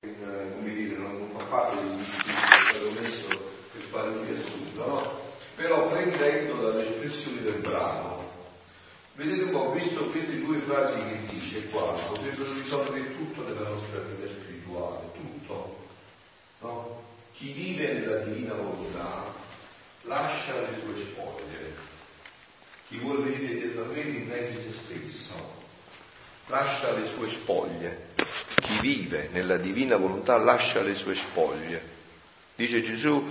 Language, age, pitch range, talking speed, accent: Italian, 40-59, 95-145 Hz, 125 wpm, native